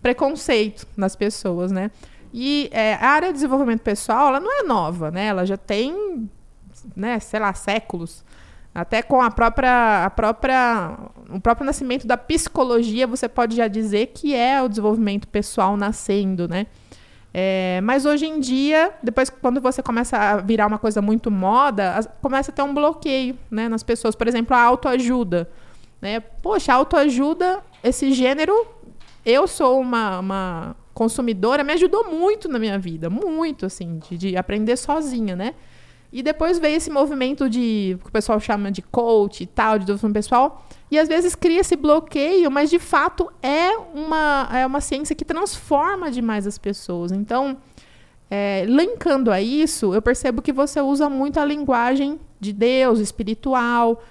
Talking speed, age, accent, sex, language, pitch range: 165 wpm, 20-39, Brazilian, female, Portuguese, 215-285 Hz